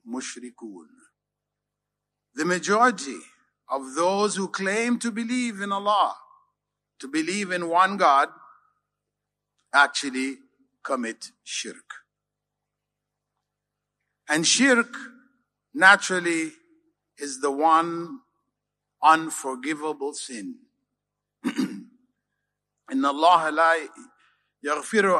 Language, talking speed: Malay, 70 wpm